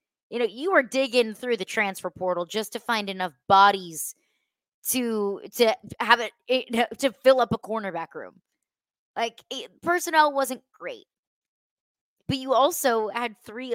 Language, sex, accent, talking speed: English, female, American, 150 wpm